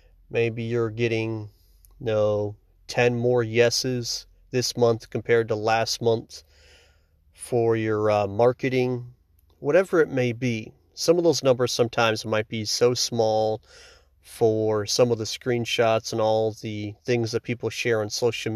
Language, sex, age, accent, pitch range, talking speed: English, male, 30-49, American, 105-120 Hz, 140 wpm